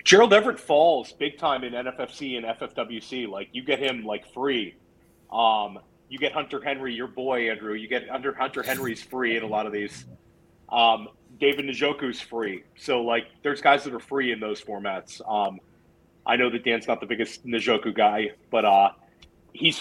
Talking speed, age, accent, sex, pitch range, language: 185 wpm, 30-49, American, male, 115-140 Hz, English